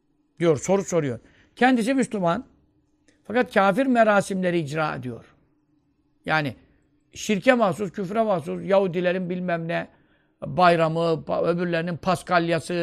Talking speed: 100 wpm